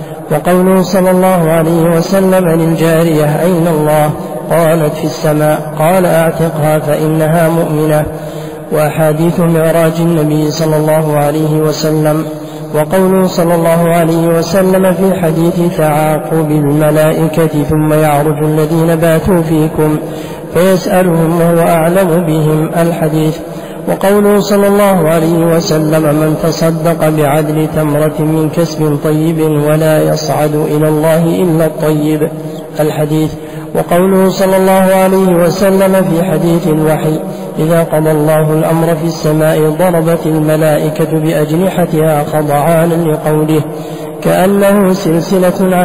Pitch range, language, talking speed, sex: 155-170 Hz, Arabic, 105 wpm, male